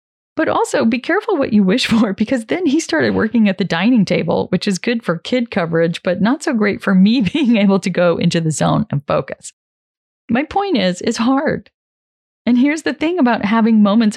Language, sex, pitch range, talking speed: English, female, 180-250 Hz, 210 wpm